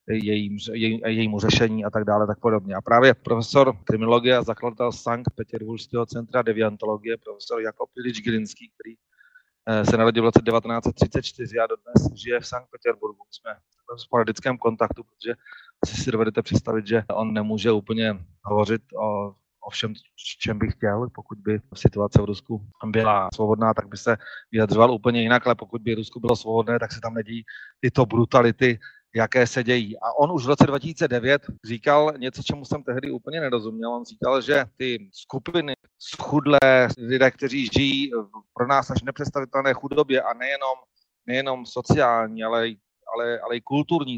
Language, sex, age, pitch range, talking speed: Slovak, male, 30-49, 110-135 Hz, 165 wpm